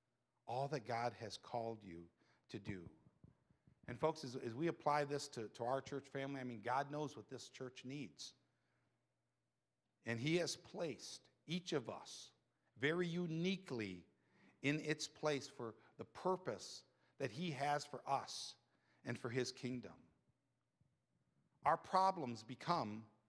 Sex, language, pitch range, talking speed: male, English, 125-150 Hz, 140 wpm